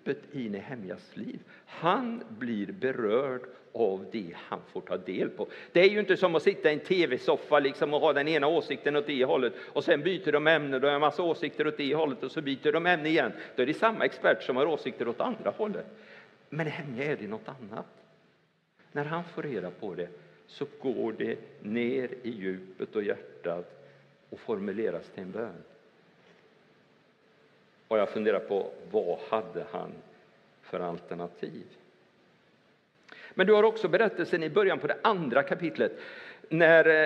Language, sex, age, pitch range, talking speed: Swedish, male, 50-69, 145-225 Hz, 175 wpm